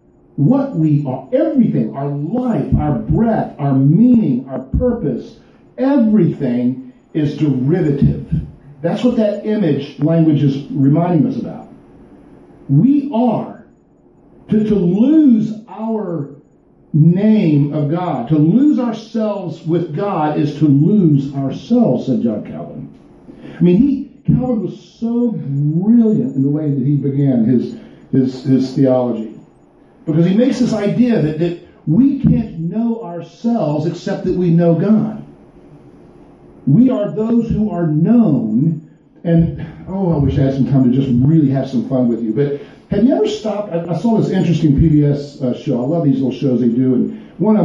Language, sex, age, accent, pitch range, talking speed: English, male, 50-69, American, 140-220 Hz, 155 wpm